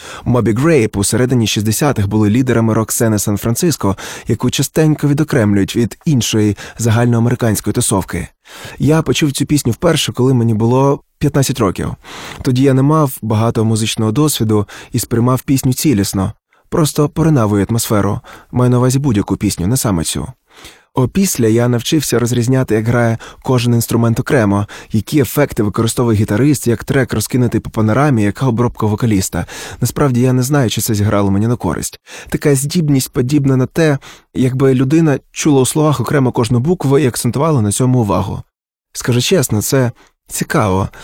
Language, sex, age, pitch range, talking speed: Ukrainian, male, 20-39, 110-135 Hz, 150 wpm